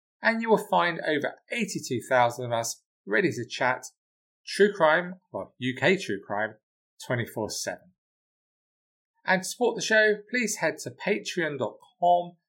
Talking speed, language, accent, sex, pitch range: 130 wpm, English, British, male, 135-200 Hz